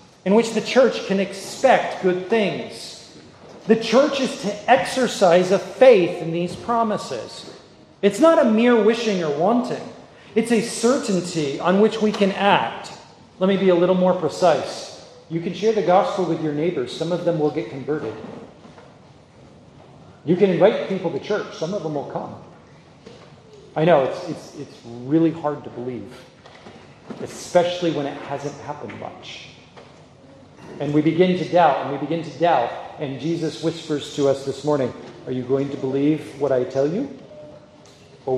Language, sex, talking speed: English, male, 165 wpm